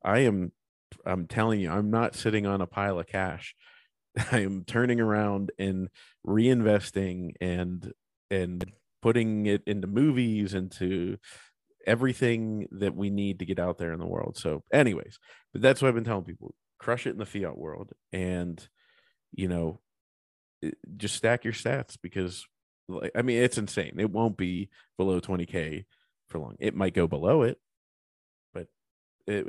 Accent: American